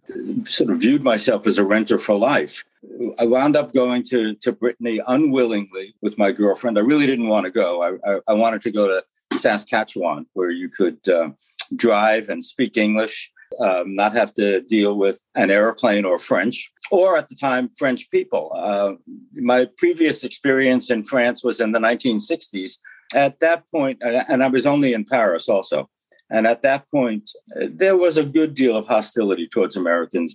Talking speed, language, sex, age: 180 wpm, English, male, 60-79